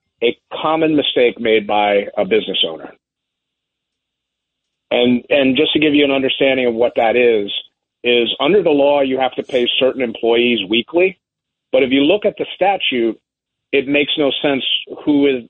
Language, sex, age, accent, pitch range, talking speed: English, male, 50-69, American, 120-155 Hz, 170 wpm